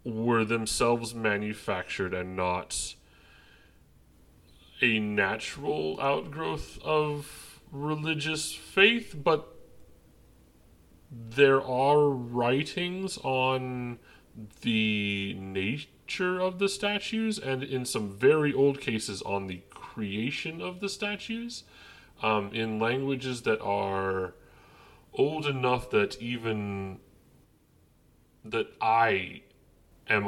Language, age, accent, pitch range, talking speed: English, 30-49, American, 90-130 Hz, 90 wpm